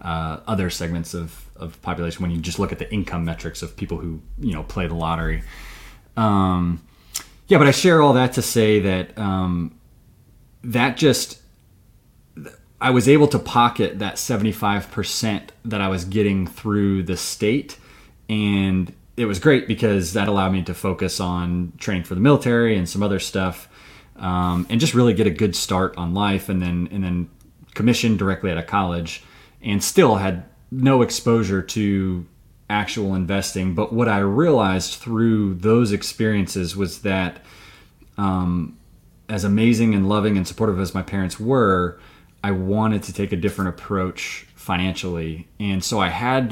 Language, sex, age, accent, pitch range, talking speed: English, male, 30-49, American, 90-110 Hz, 165 wpm